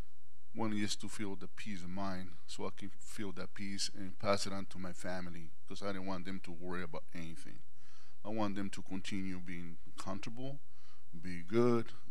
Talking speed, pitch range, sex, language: 195 wpm, 90-100 Hz, male, English